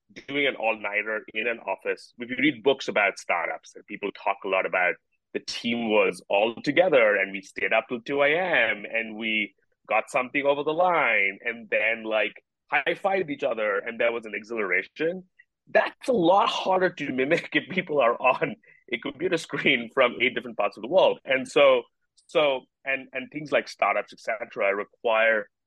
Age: 30-49